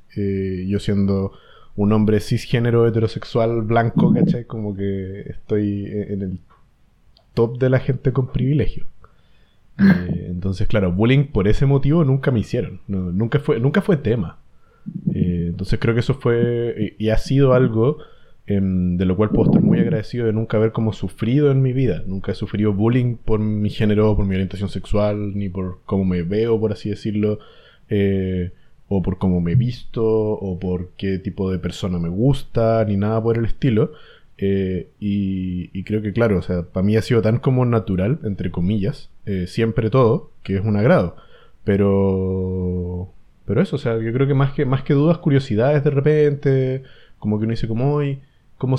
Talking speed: 180 wpm